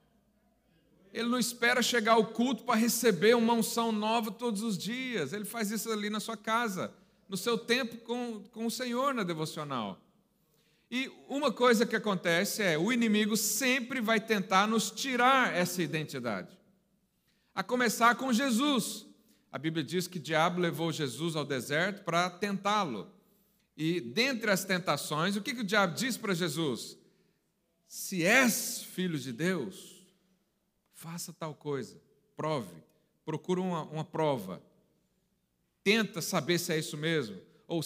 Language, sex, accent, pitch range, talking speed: Portuguese, male, Brazilian, 170-230 Hz, 145 wpm